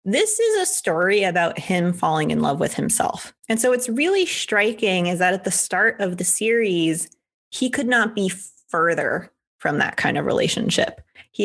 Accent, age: American, 20-39